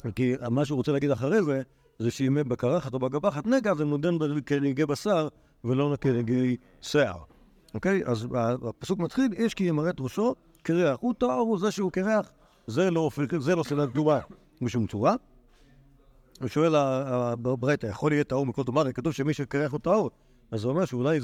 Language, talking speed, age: Hebrew, 170 wpm, 50-69